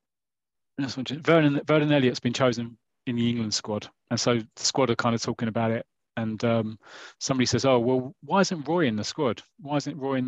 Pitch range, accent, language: 115-130 Hz, British, English